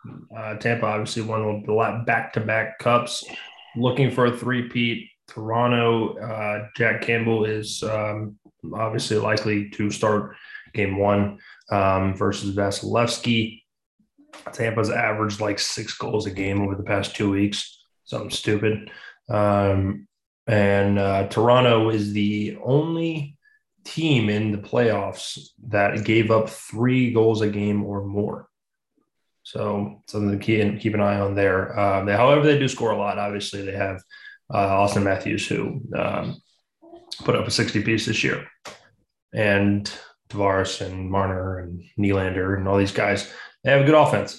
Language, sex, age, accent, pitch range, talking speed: English, male, 20-39, American, 100-120 Hz, 145 wpm